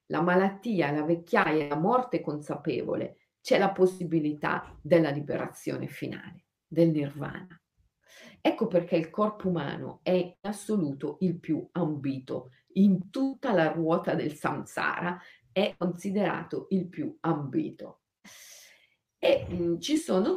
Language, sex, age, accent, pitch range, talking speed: Italian, female, 40-59, native, 165-235 Hz, 120 wpm